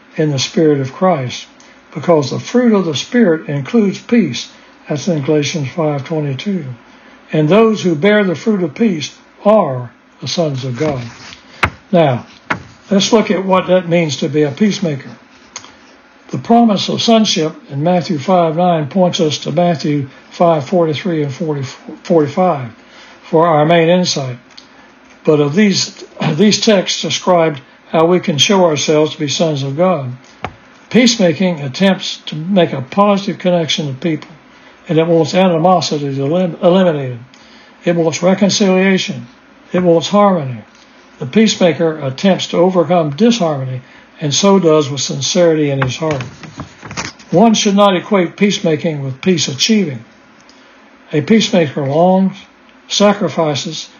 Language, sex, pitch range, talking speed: English, male, 150-200 Hz, 140 wpm